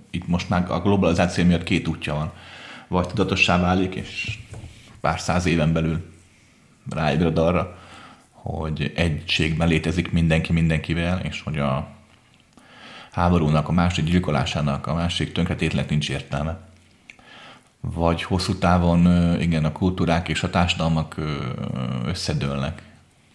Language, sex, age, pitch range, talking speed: Hungarian, male, 30-49, 80-95 Hz, 120 wpm